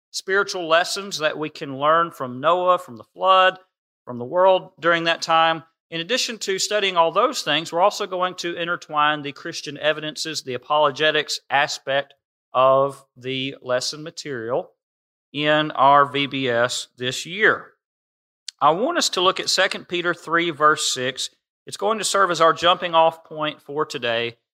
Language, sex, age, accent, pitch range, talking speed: English, male, 40-59, American, 135-180 Hz, 160 wpm